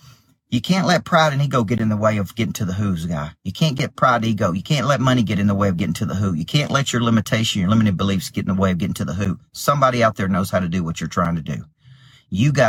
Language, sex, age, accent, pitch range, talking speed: English, male, 40-59, American, 95-130 Hz, 305 wpm